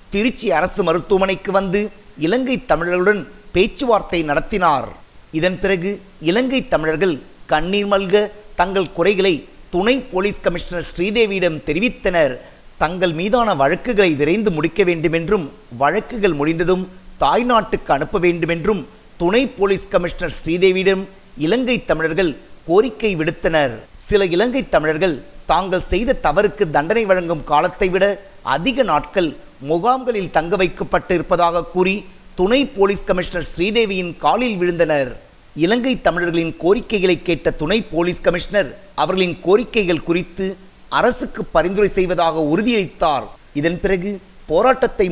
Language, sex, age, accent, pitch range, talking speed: Tamil, male, 50-69, native, 170-205 Hz, 95 wpm